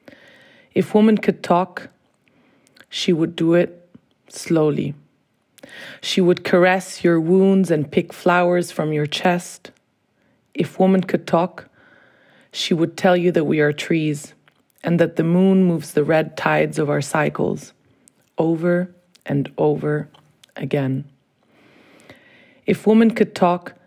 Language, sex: English, female